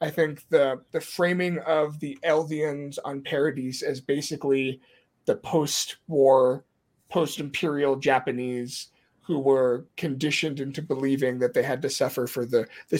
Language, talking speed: English, 135 wpm